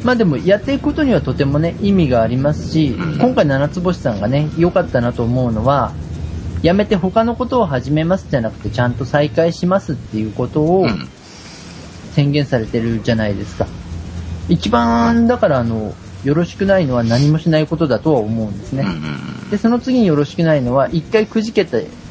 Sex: male